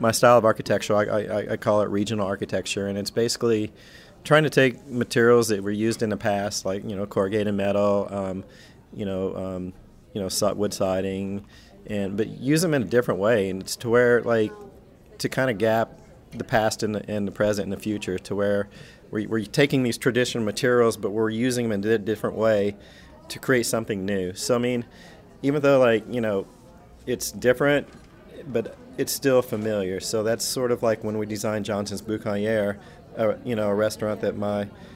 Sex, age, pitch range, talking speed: male, 40-59, 100-120 Hz, 195 wpm